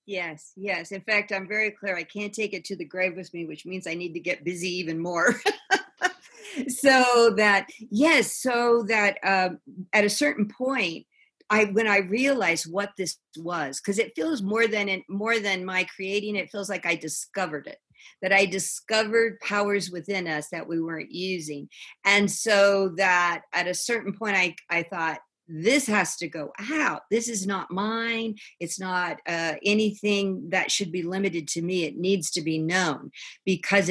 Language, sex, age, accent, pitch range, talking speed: English, female, 50-69, American, 170-210 Hz, 180 wpm